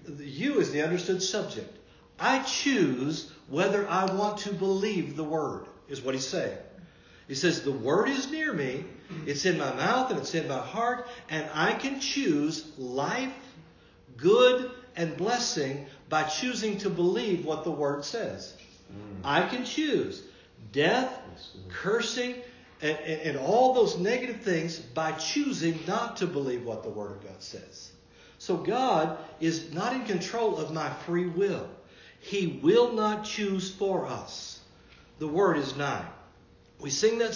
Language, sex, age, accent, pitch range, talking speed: English, male, 60-79, American, 150-225 Hz, 155 wpm